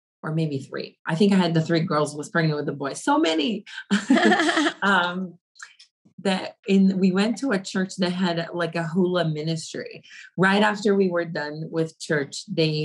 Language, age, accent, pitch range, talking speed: English, 30-49, American, 155-190 Hz, 180 wpm